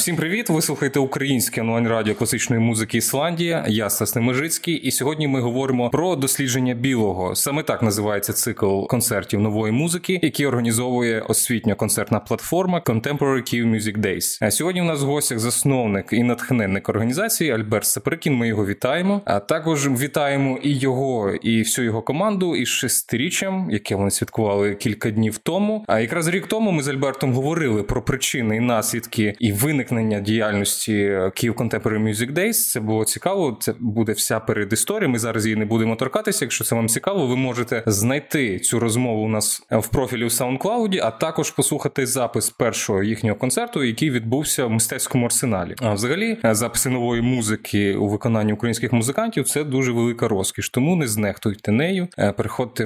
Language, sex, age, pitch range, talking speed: Ukrainian, male, 20-39, 110-140 Hz, 165 wpm